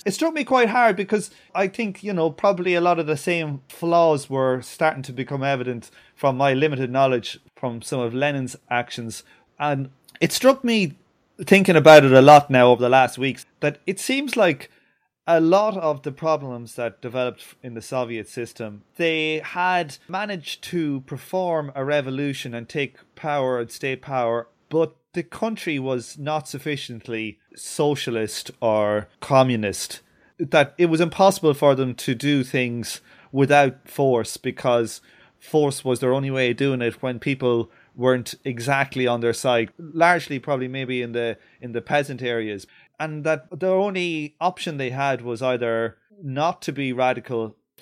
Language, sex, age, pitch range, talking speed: English, male, 30-49, 125-165 Hz, 165 wpm